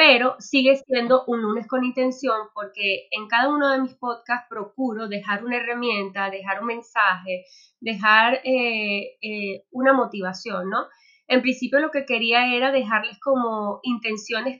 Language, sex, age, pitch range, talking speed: Spanish, female, 20-39, 205-255 Hz, 150 wpm